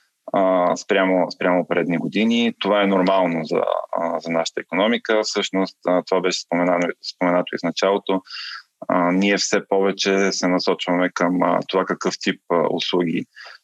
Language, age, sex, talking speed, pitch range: Bulgarian, 20-39, male, 130 wpm, 90-95 Hz